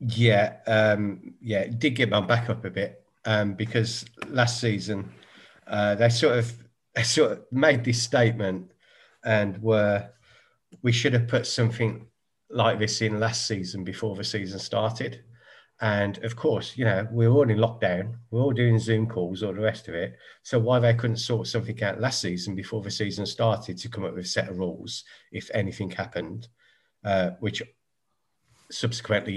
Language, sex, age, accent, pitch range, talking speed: English, male, 40-59, British, 100-120 Hz, 175 wpm